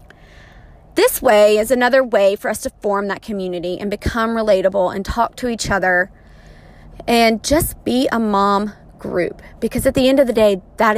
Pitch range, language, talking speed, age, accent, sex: 195-235 Hz, English, 180 wpm, 20-39, American, female